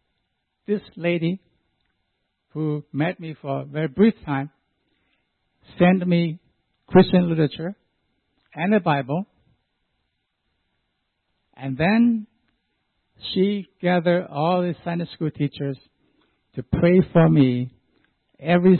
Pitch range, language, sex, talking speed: 125-170 Hz, English, male, 100 wpm